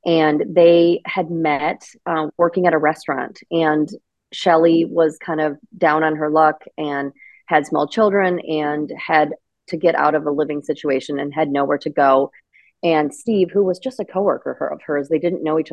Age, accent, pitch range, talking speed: 30-49, American, 150-175 Hz, 185 wpm